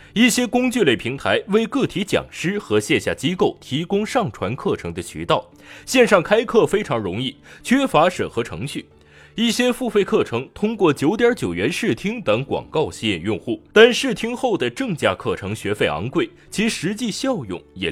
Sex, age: male, 20-39